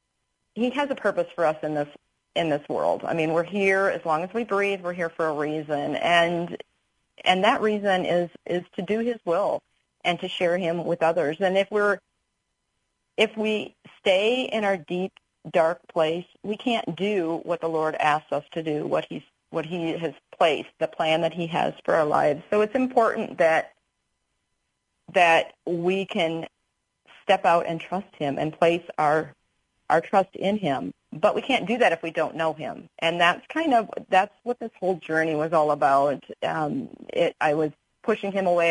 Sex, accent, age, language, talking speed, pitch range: female, American, 40-59, English, 190 wpm, 160-200 Hz